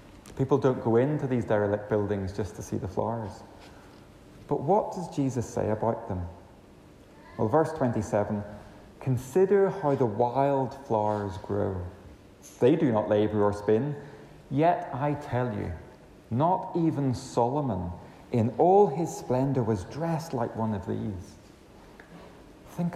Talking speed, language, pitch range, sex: 135 wpm, English, 100-135 Hz, male